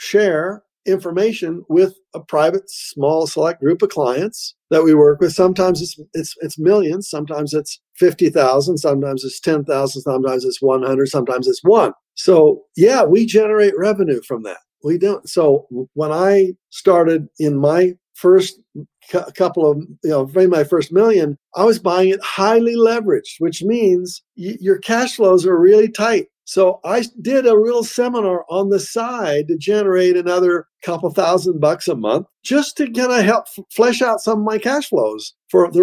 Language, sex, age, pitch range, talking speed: English, male, 50-69, 155-230 Hz, 170 wpm